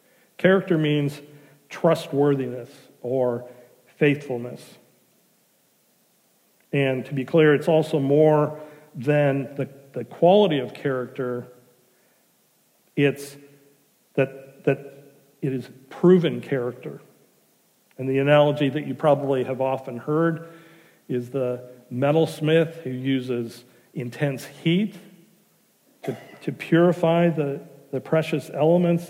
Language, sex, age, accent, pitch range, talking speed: English, male, 50-69, American, 130-160 Hz, 100 wpm